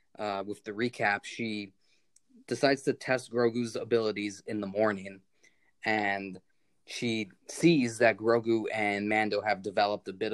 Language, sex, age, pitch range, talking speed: English, male, 20-39, 100-120 Hz, 140 wpm